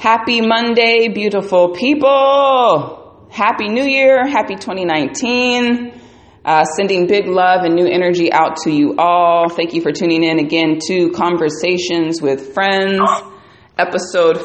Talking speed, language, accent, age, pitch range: 130 wpm, English, American, 30-49, 160-210 Hz